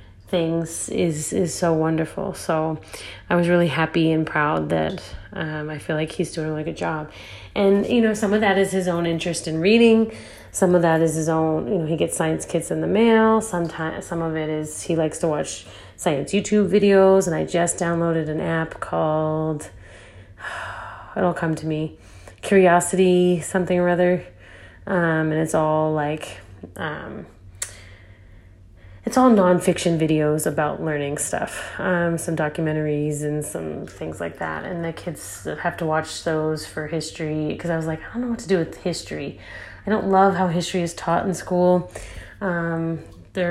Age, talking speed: 30-49, 180 wpm